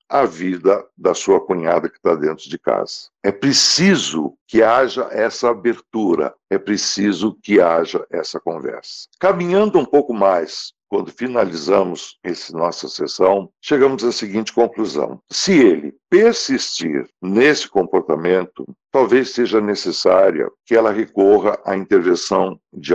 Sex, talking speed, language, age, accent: male, 130 wpm, Portuguese, 60-79, Brazilian